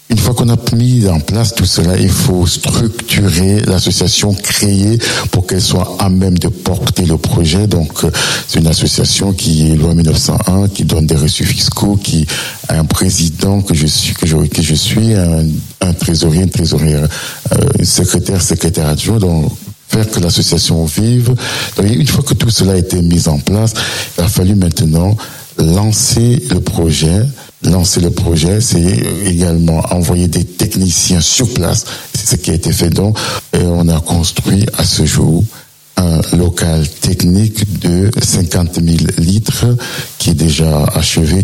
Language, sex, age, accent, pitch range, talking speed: French, male, 60-79, French, 85-105 Hz, 165 wpm